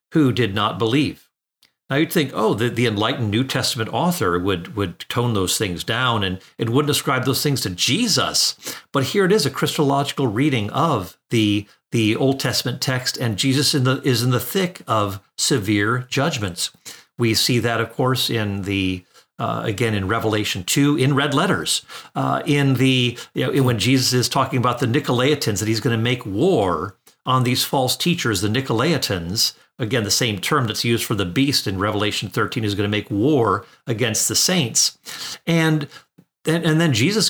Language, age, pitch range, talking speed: English, 50-69, 115-145 Hz, 185 wpm